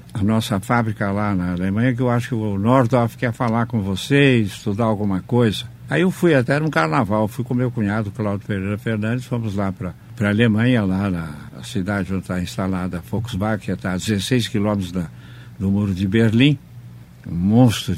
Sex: male